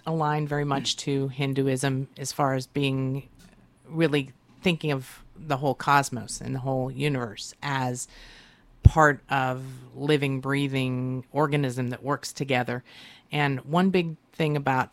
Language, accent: English, American